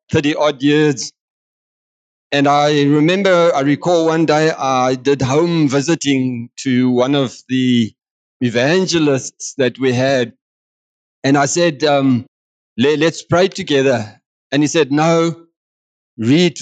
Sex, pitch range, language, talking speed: male, 125-155 Hz, English, 120 wpm